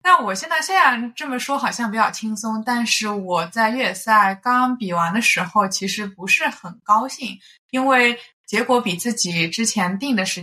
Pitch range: 185-245 Hz